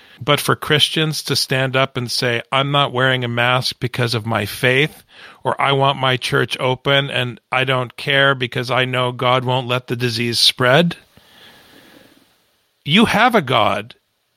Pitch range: 125-150 Hz